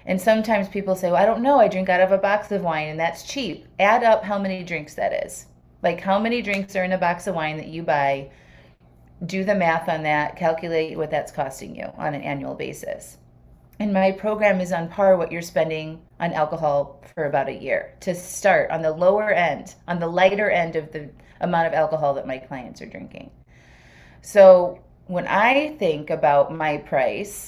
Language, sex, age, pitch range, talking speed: English, female, 30-49, 150-195 Hz, 205 wpm